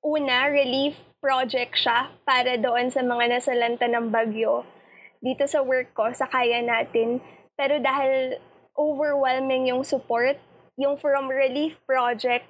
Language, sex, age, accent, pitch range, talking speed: Filipino, female, 20-39, native, 245-280 Hz, 130 wpm